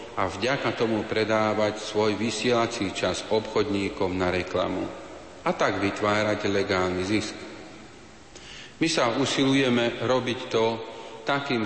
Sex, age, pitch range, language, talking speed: male, 40-59, 105-120 Hz, Slovak, 110 wpm